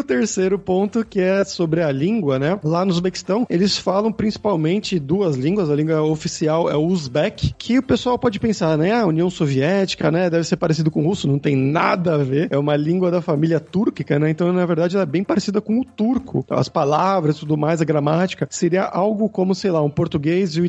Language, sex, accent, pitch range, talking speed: Portuguese, male, Brazilian, 155-190 Hz, 225 wpm